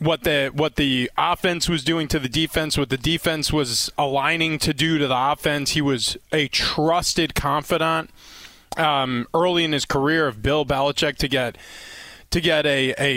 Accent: American